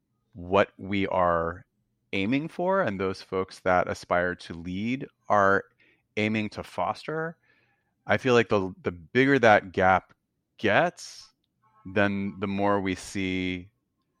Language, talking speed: English, 125 wpm